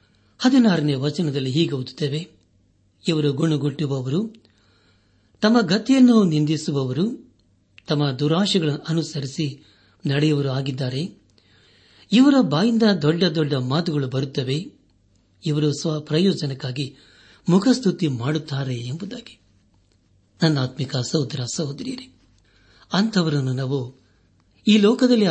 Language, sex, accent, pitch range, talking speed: Kannada, male, native, 130-170 Hz, 75 wpm